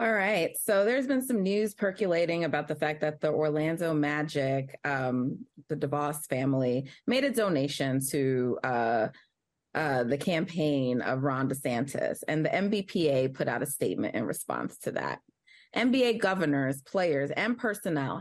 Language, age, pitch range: English, 30-49, 145-200 Hz